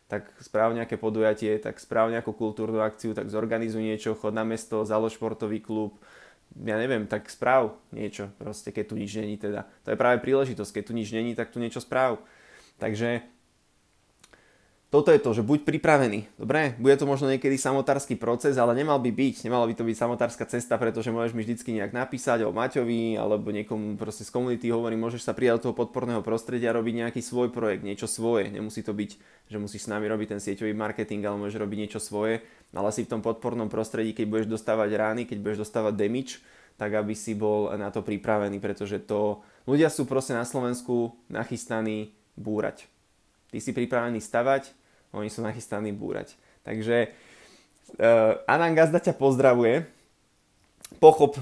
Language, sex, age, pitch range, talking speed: Slovak, male, 20-39, 110-120 Hz, 175 wpm